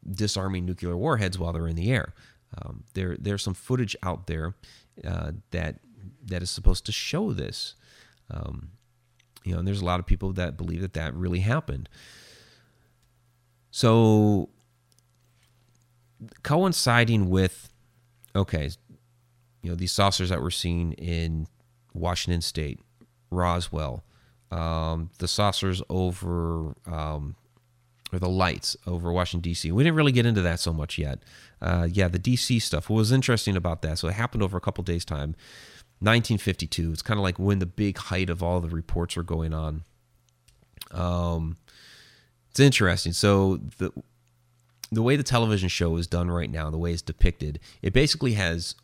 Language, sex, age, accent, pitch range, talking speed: English, male, 30-49, American, 85-120 Hz, 155 wpm